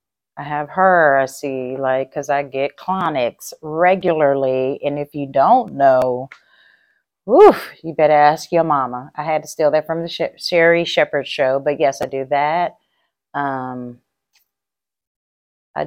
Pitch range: 135-170 Hz